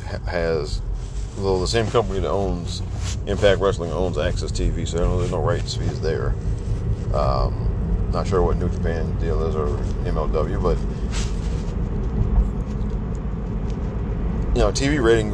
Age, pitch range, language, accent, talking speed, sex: 40-59, 90-105 Hz, English, American, 125 wpm, male